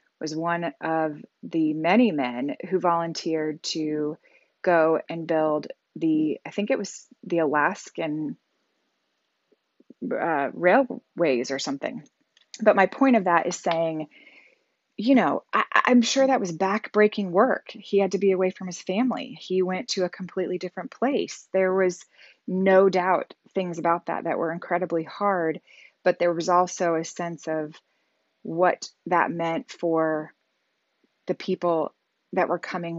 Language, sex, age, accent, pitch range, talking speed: English, female, 20-39, American, 165-200 Hz, 145 wpm